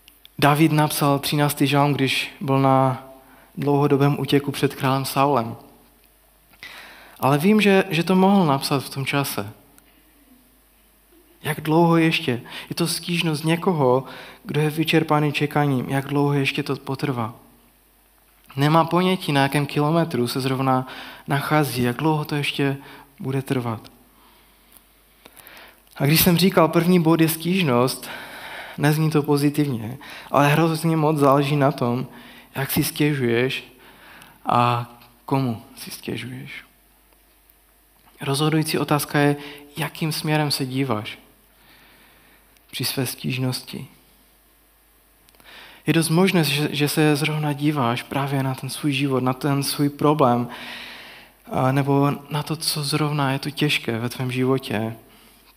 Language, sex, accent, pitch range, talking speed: Czech, male, native, 130-150 Hz, 120 wpm